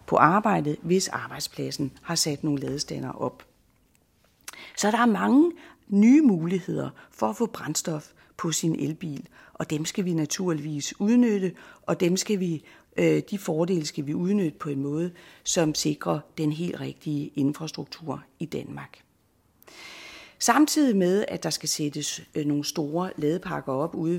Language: Danish